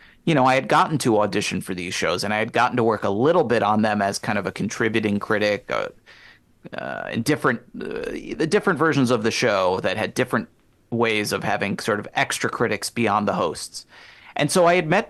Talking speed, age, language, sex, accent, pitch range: 225 wpm, 30-49, English, male, American, 105-145 Hz